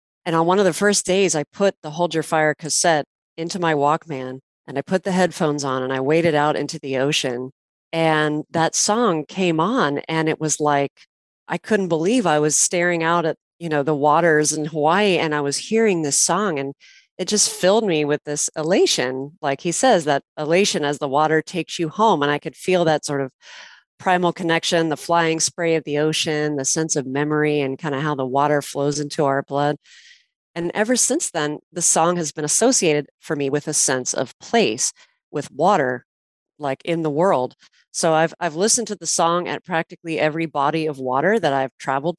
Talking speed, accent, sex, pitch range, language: 205 wpm, American, female, 145-175 Hz, English